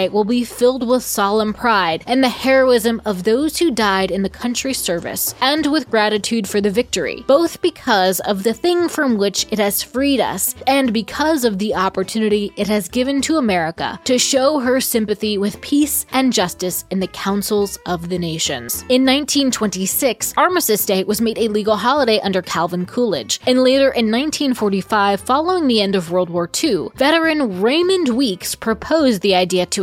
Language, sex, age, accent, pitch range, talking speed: English, female, 20-39, American, 195-260 Hz, 175 wpm